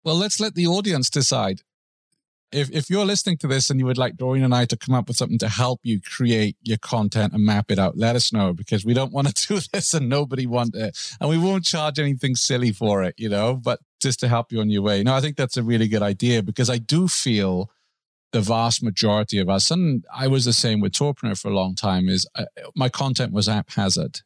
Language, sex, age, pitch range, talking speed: English, male, 40-59, 100-130 Hz, 245 wpm